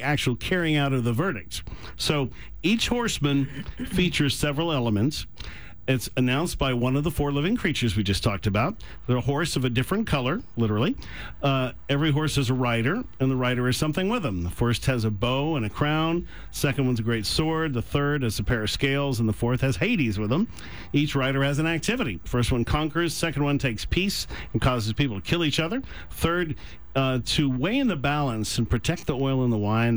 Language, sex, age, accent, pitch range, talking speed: English, male, 50-69, American, 120-150 Hz, 210 wpm